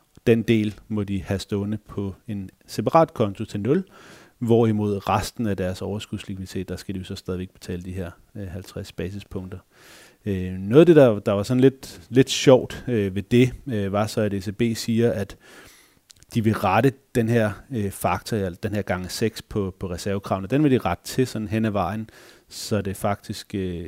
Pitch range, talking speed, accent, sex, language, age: 95-115 Hz, 175 wpm, native, male, Danish, 30-49